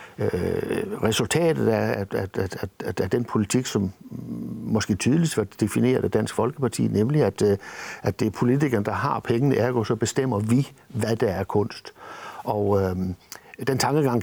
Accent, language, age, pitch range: native, Danish, 60-79, 100-125 Hz